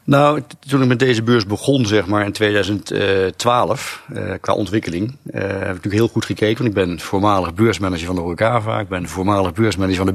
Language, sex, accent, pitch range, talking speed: Dutch, male, Dutch, 95-115 Hz, 205 wpm